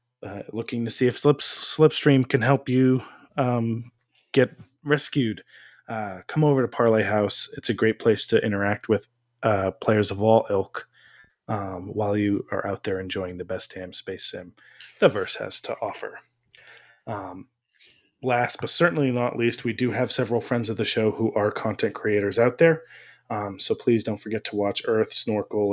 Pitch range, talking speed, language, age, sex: 100-120 Hz, 175 wpm, English, 20-39, male